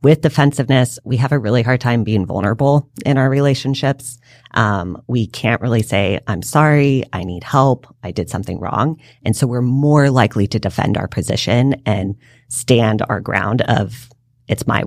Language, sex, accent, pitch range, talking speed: English, female, American, 110-130 Hz, 175 wpm